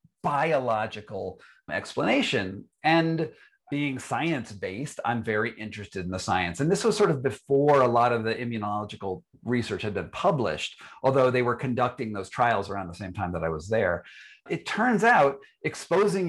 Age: 40-59